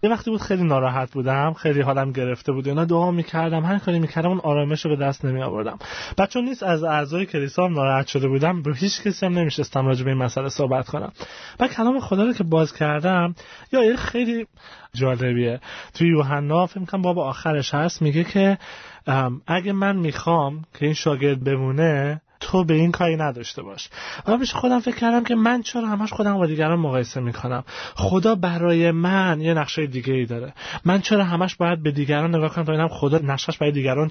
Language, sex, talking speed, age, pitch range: Persian, male, 190 wpm, 30-49, 140-180 Hz